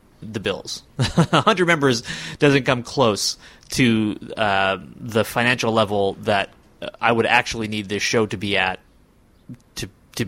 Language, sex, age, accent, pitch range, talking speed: English, male, 30-49, American, 105-140 Hz, 145 wpm